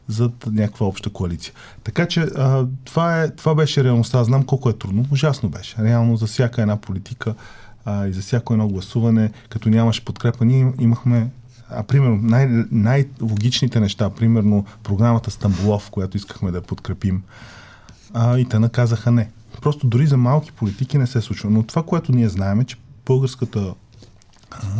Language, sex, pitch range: Bulgarian, male, 105-130 Hz